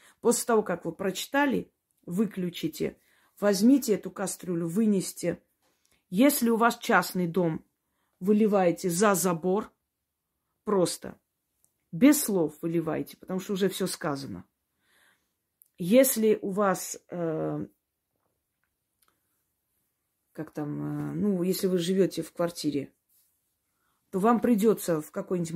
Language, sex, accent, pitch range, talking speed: Russian, female, native, 165-215 Hz, 100 wpm